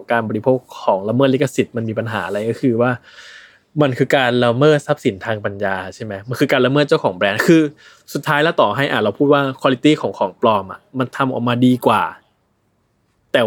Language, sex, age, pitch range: Thai, male, 20-39, 110-145 Hz